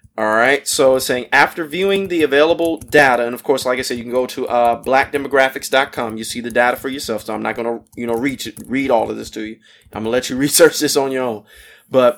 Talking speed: 260 wpm